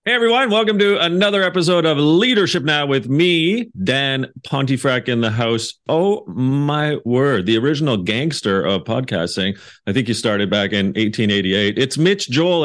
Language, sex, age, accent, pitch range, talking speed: English, male, 40-59, American, 115-165 Hz, 160 wpm